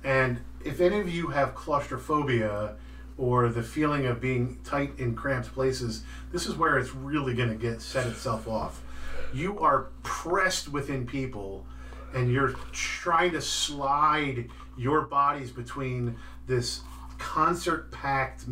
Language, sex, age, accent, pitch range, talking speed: English, male, 40-59, American, 120-155 Hz, 140 wpm